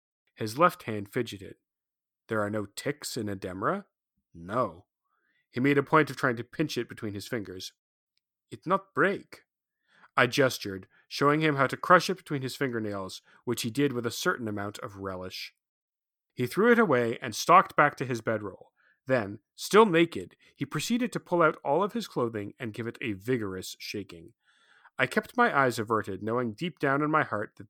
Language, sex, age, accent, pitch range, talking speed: English, male, 30-49, American, 110-155 Hz, 190 wpm